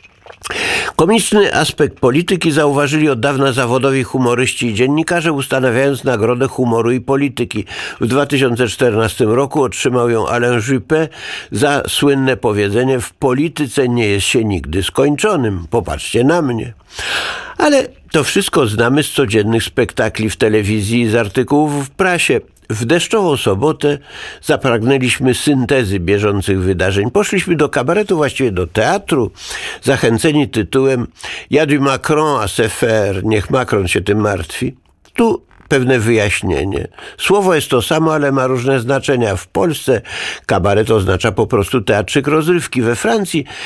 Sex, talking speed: male, 130 wpm